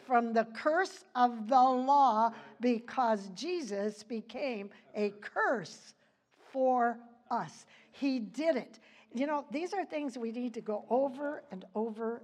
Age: 60-79